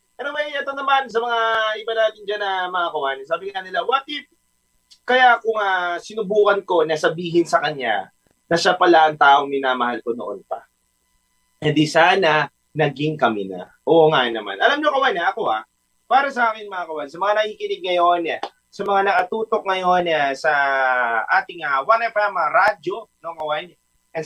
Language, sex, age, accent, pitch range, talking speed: Filipino, male, 30-49, native, 155-230 Hz, 170 wpm